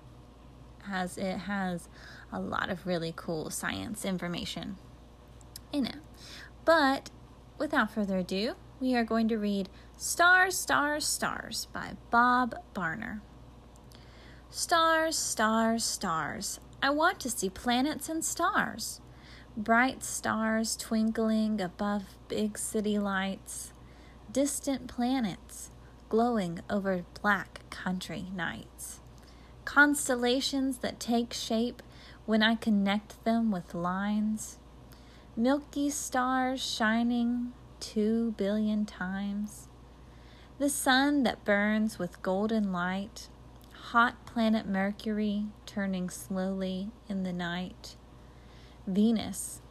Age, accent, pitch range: 20-39, American, 195-250 Hz